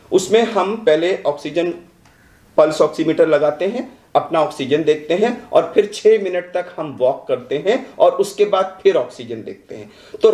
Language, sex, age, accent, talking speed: Hindi, male, 40-59, native, 170 wpm